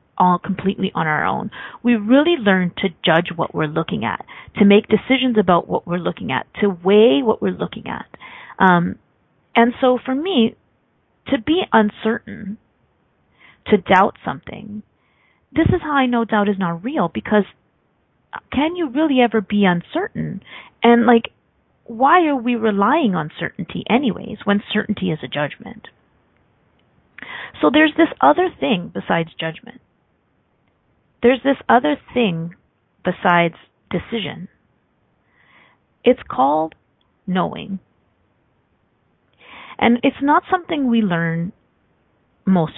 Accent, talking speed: American, 130 wpm